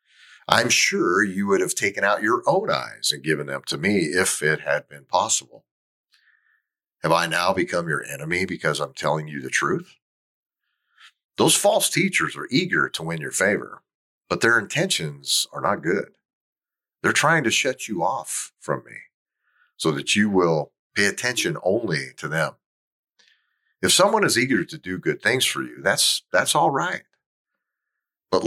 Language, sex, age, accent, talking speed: English, male, 50-69, American, 165 wpm